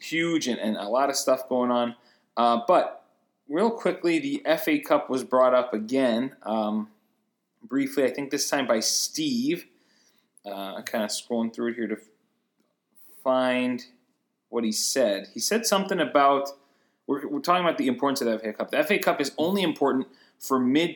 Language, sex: English, male